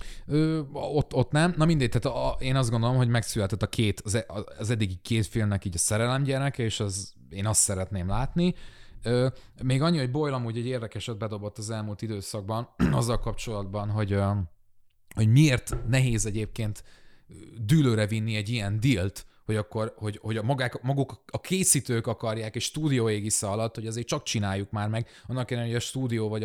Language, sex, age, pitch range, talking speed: Hungarian, male, 20-39, 105-130 Hz, 170 wpm